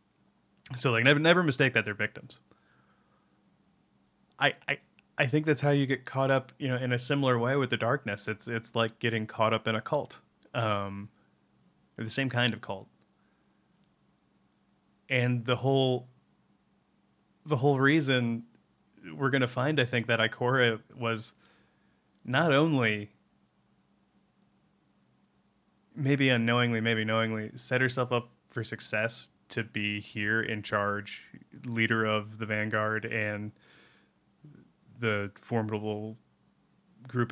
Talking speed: 130 wpm